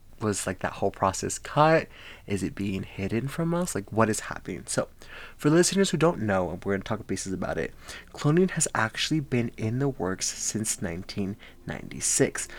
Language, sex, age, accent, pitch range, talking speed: English, male, 20-39, American, 100-135 Hz, 190 wpm